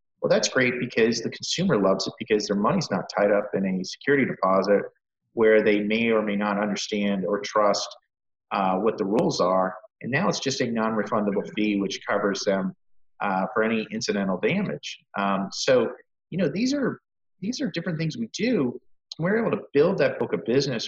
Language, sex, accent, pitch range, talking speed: English, male, American, 100-125 Hz, 195 wpm